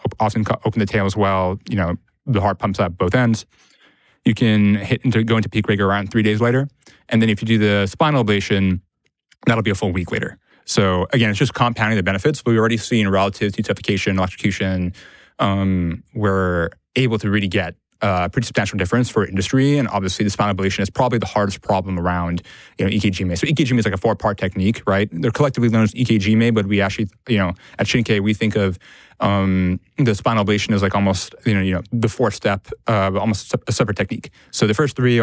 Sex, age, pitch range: male, 20-39, 100-115 Hz